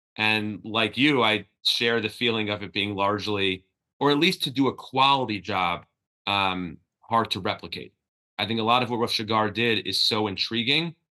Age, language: 30-49, English